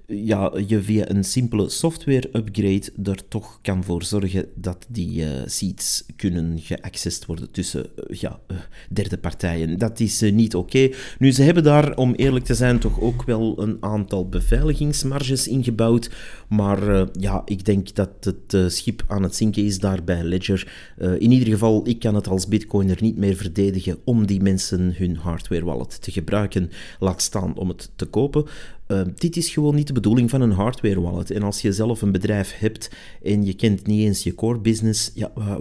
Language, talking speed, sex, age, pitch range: Dutch, 190 wpm, male, 40-59, 95-115 Hz